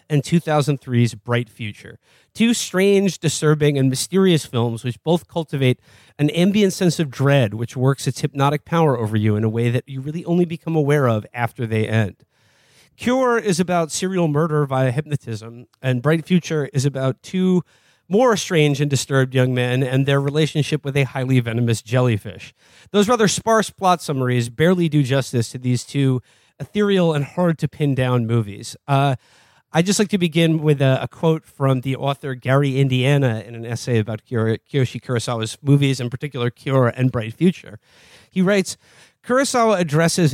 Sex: male